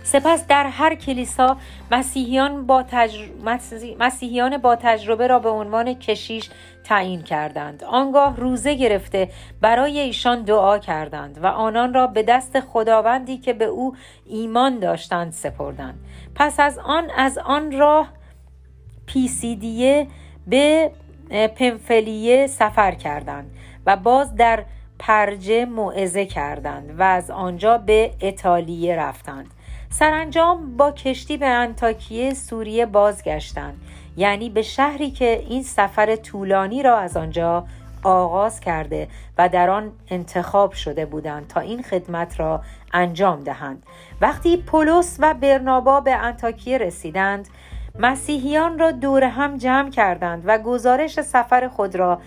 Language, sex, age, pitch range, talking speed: Persian, female, 40-59, 175-260 Hz, 125 wpm